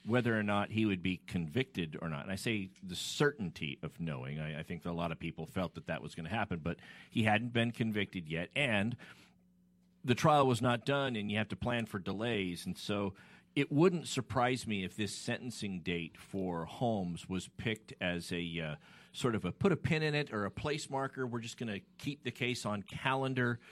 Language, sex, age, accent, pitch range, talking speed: English, male, 40-59, American, 100-125 Hz, 220 wpm